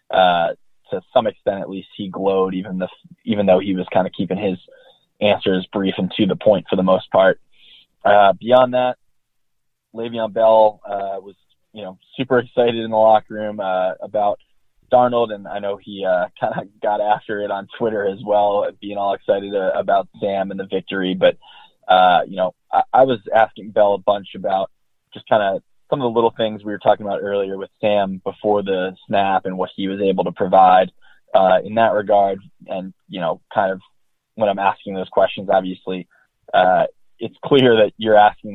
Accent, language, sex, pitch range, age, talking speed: American, English, male, 95-105 Hz, 20-39, 200 wpm